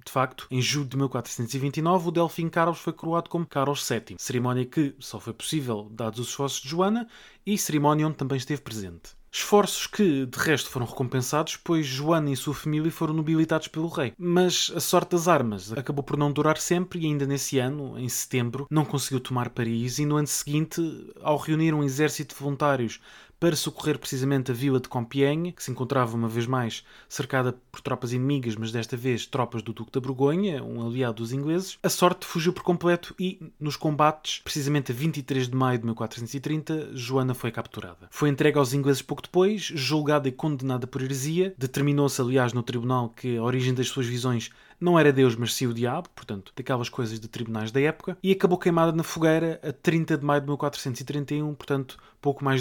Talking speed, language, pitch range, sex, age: 195 wpm, Portuguese, 125-155 Hz, male, 20-39